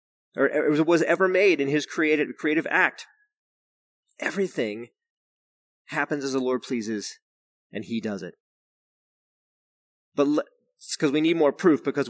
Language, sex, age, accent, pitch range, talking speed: English, male, 30-49, American, 140-200 Hz, 130 wpm